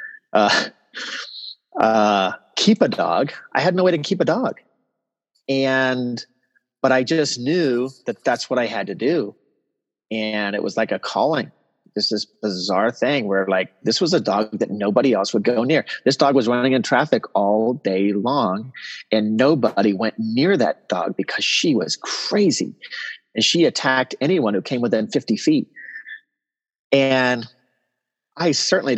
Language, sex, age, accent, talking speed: English, male, 30-49, American, 165 wpm